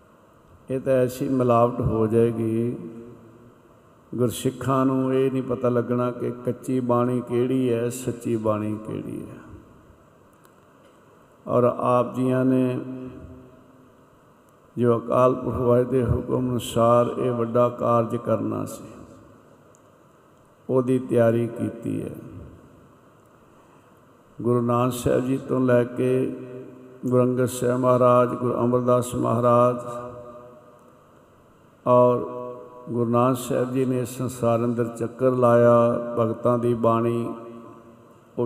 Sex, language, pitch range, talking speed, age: male, Punjabi, 115-125 Hz, 100 wpm, 60-79